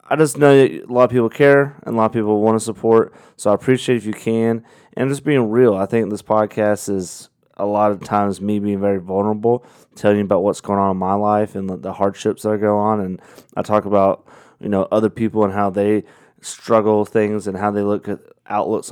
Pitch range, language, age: 100-115 Hz, English, 20-39